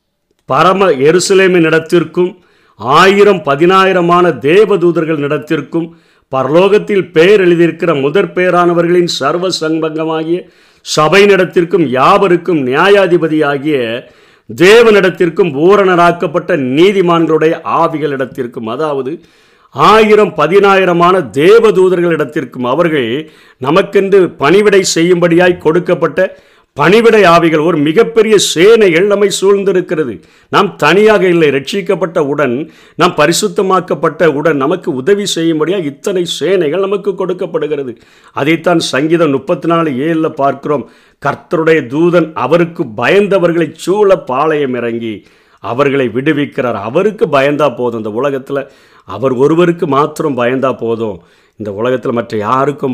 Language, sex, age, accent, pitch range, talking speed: Tamil, male, 50-69, native, 145-190 Hz, 95 wpm